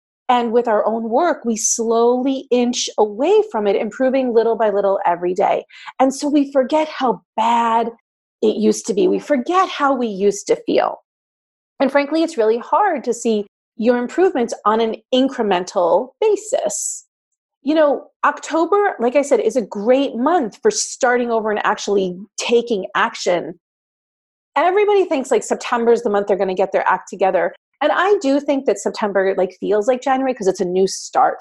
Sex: female